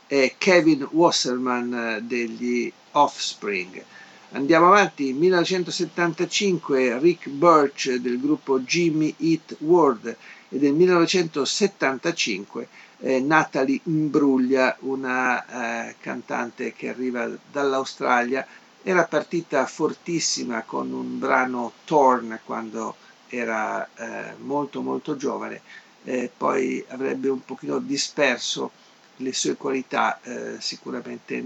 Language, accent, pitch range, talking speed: Italian, native, 125-160 Hz, 95 wpm